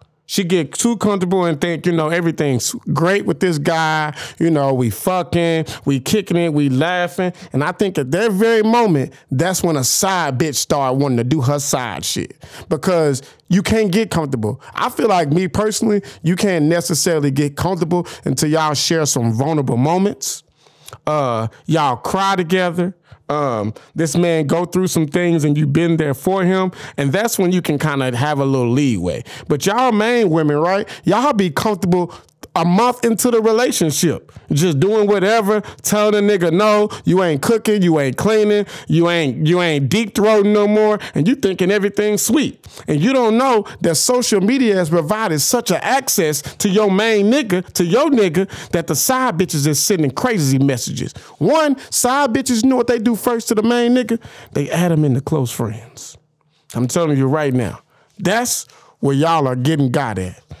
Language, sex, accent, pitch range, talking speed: English, male, American, 150-210 Hz, 185 wpm